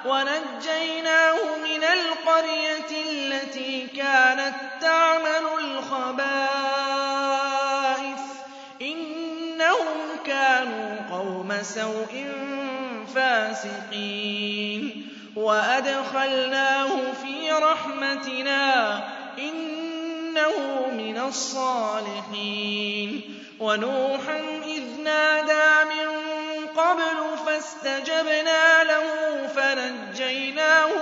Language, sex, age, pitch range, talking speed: Arabic, male, 20-39, 265-310 Hz, 50 wpm